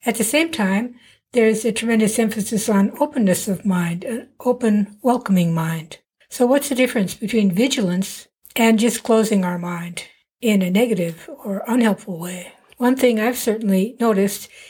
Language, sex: English, female